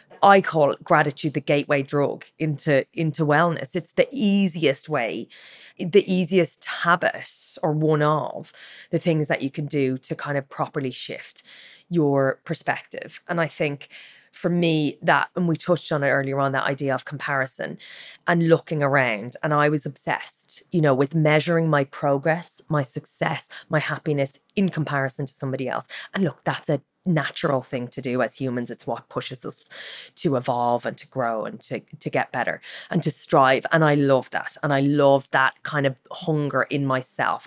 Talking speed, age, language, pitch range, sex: 180 wpm, 20-39, English, 135-165 Hz, female